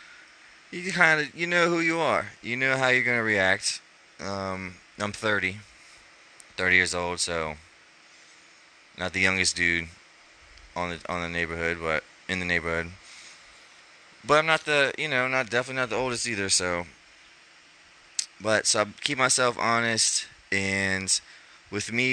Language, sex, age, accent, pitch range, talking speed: English, male, 20-39, American, 85-110 Hz, 150 wpm